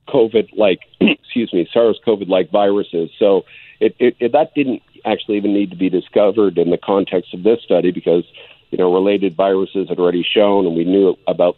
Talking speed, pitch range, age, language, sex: 165 wpm, 85-95 Hz, 50-69, English, male